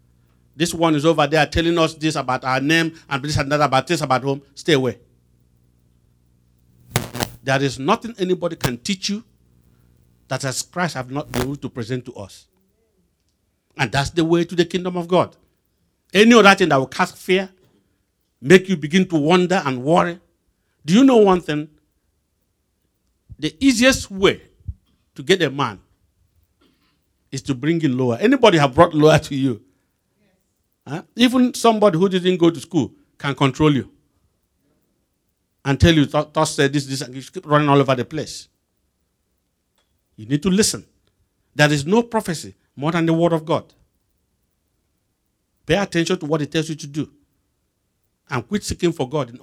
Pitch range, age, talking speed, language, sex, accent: 100-165 Hz, 60-79, 170 wpm, English, male, Nigerian